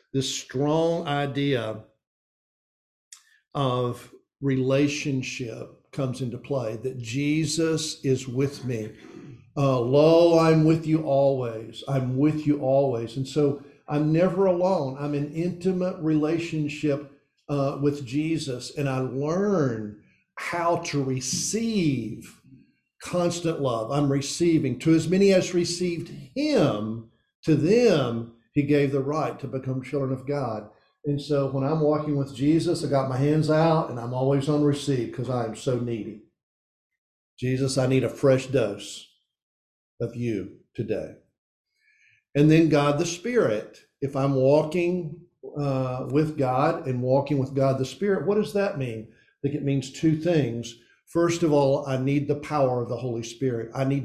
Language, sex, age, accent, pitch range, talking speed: English, male, 50-69, American, 130-155 Hz, 150 wpm